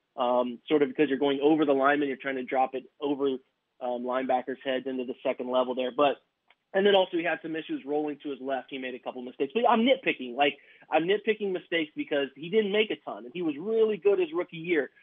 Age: 20-39